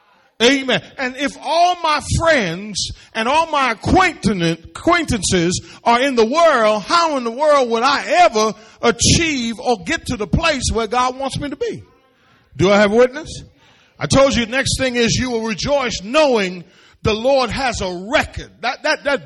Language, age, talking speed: English, 40-59, 175 wpm